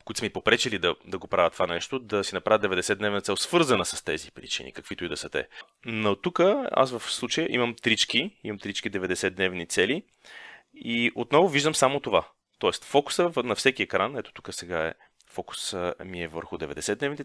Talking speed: 190 wpm